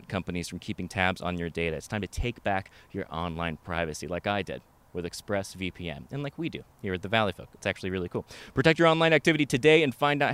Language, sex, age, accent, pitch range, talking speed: English, male, 30-49, American, 100-145 Hz, 240 wpm